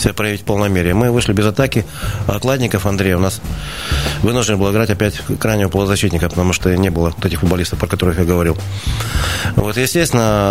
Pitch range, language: 95-120 Hz, Russian